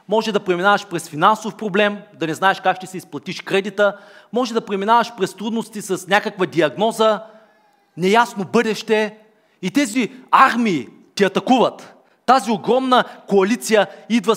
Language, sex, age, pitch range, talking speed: Bulgarian, male, 40-59, 190-245 Hz, 140 wpm